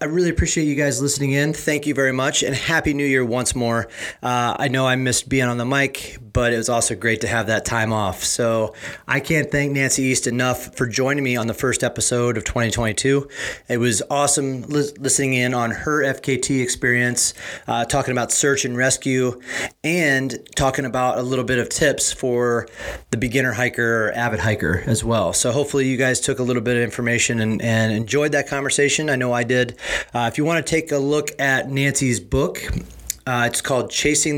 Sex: male